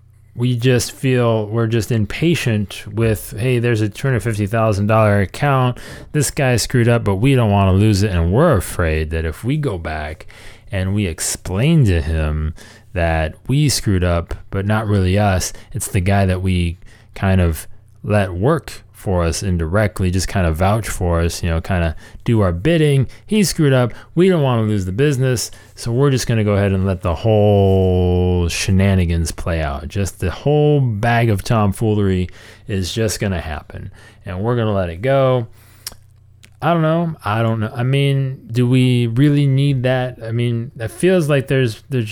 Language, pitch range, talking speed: English, 95-120 Hz, 185 wpm